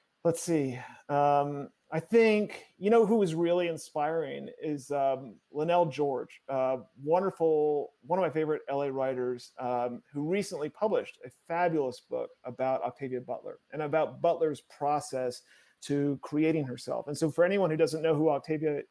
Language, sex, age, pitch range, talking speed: English, male, 40-59, 140-175 Hz, 155 wpm